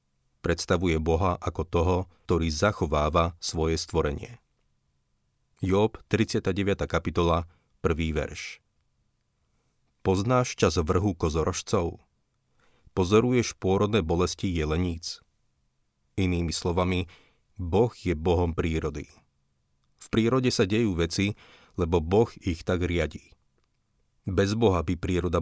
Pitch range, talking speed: 80-95 Hz, 95 wpm